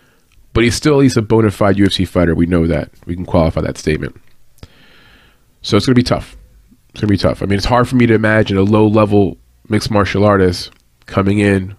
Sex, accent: male, American